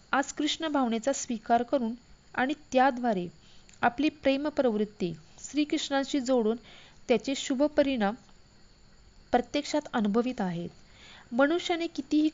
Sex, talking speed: female, 90 wpm